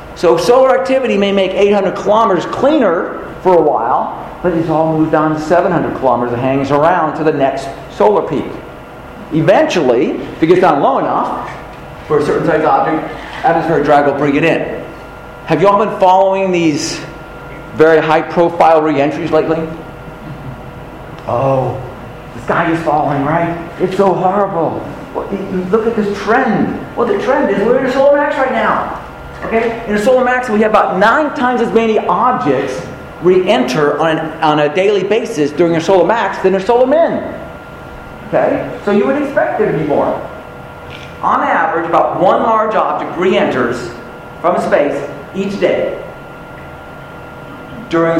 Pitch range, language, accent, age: 155-220 Hz, English, American, 50-69